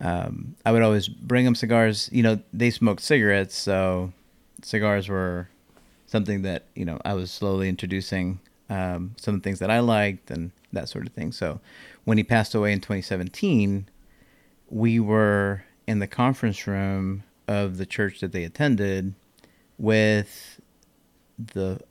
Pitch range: 95-110 Hz